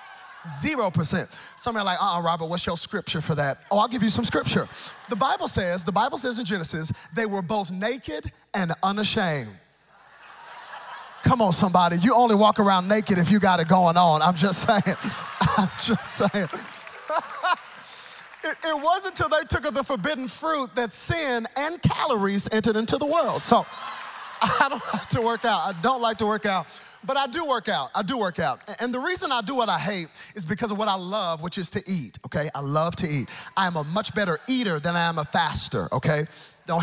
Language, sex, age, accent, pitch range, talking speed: English, male, 30-49, American, 165-230 Hz, 215 wpm